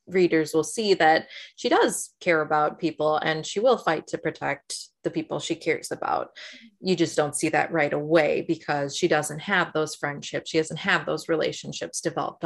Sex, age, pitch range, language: female, 20-39, 160-180 Hz, English